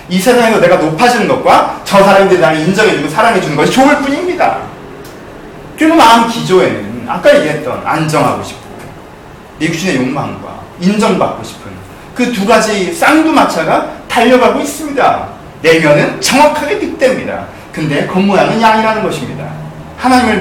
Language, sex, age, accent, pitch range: Korean, male, 30-49, native, 165-245 Hz